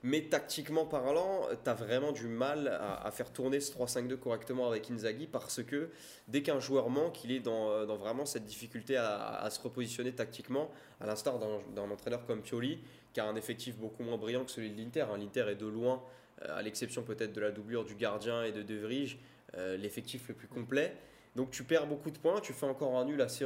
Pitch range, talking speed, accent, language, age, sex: 110-135 Hz, 225 wpm, French, French, 20-39, male